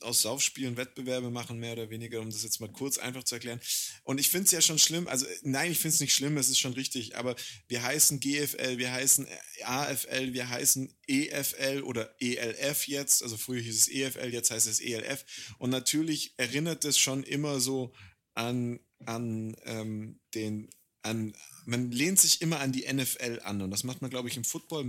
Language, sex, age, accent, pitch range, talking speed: German, male, 30-49, German, 115-140 Hz, 200 wpm